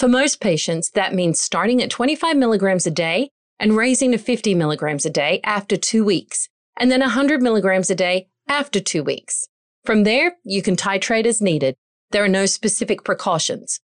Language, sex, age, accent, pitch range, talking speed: English, female, 40-59, American, 180-245 Hz, 180 wpm